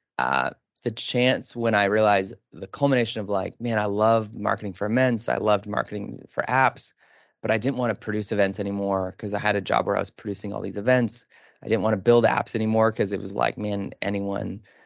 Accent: American